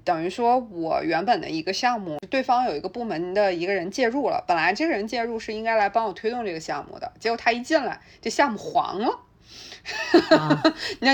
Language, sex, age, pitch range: Chinese, female, 20-39, 165-230 Hz